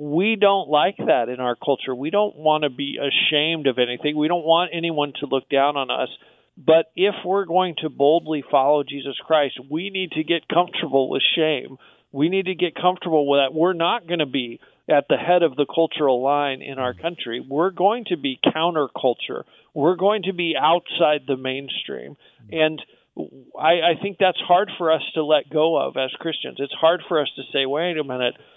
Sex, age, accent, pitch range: male, 50-69, American, 145-185 Hz